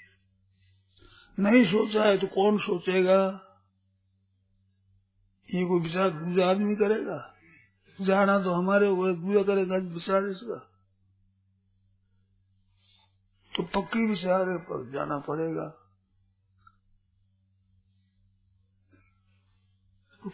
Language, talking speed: Hindi, 75 wpm